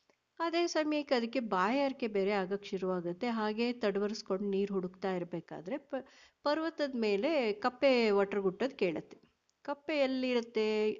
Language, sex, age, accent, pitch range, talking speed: Kannada, female, 50-69, native, 195-265 Hz, 120 wpm